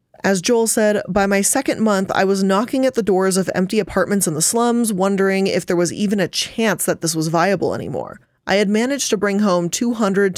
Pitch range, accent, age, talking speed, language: 175-220 Hz, American, 20-39, 220 wpm, English